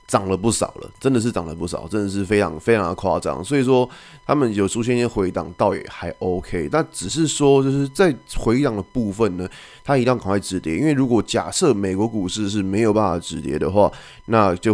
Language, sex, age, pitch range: Chinese, male, 20-39, 95-120 Hz